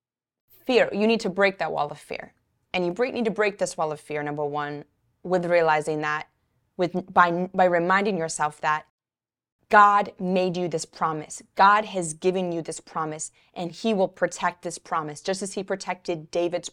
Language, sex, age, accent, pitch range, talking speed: English, female, 20-39, American, 175-225 Hz, 185 wpm